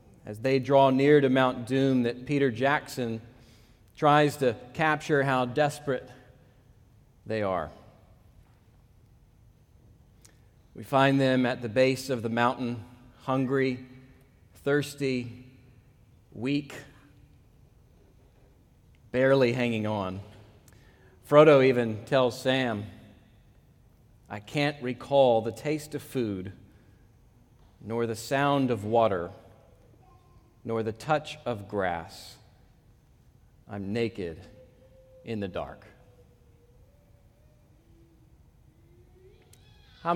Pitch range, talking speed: 110-130 Hz, 90 wpm